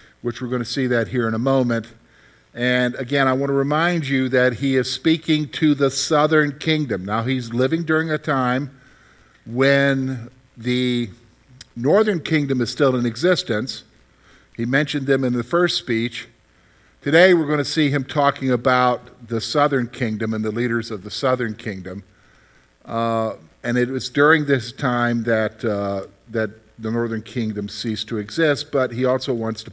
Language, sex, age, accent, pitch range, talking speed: English, male, 50-69, American, 110-140 Hz, 170 wpm